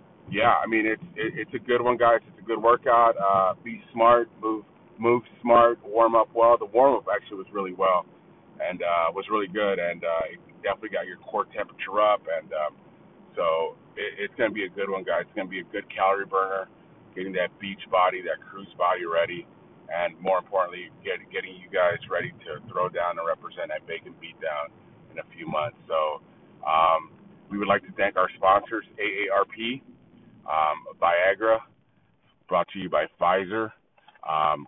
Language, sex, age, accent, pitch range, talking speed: English, male, 30-49, American, 95-115 Hz, 190 wpm